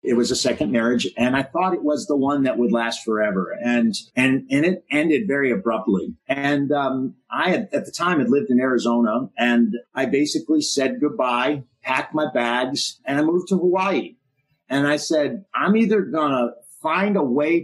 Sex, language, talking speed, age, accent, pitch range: male, English, 195 wpm, 50-69, American, 130-195 Hz